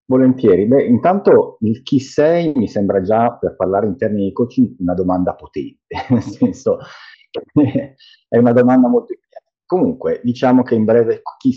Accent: Italian